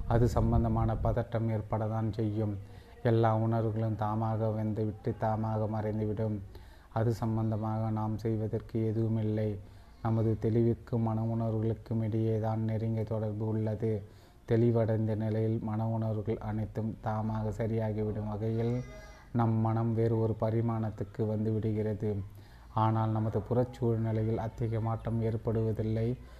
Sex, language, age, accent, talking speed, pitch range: male, Tamil, 30-49, native, 100 wpm, 110-115 Hz